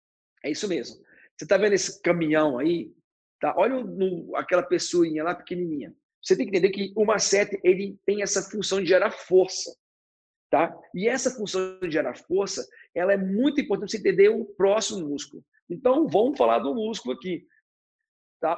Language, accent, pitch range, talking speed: Portuguese, Brazilian, 185-295 Hz, 175 wpm